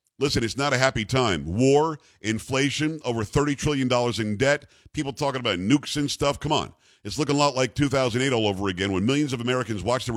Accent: American